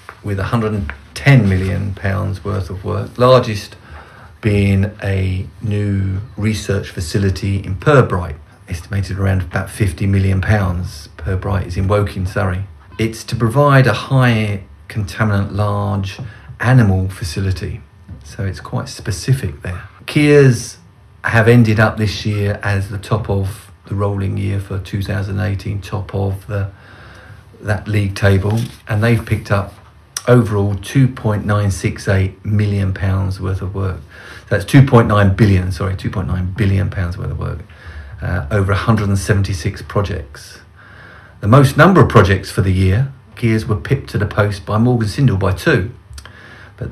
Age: 40-59